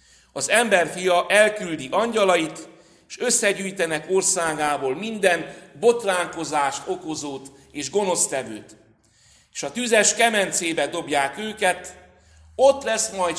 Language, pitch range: Hungarian, 135-185 Hz